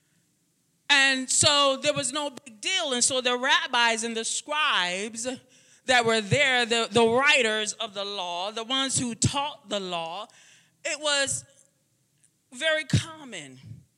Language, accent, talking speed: English, American, 140 wpm